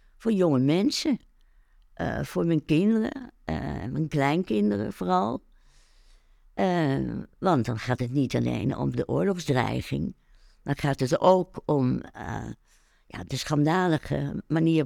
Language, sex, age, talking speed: Dutch, female, 60-79, 120 wpm